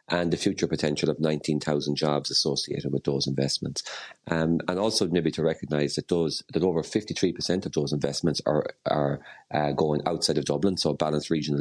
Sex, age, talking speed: male, 30-49, 195 wpm